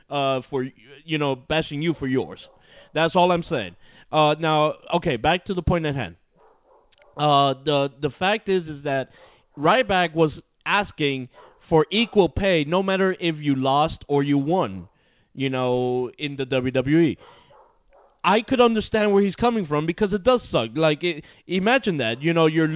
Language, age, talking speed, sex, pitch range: English, 30-49, 170 wpm, male, 140-190 Hz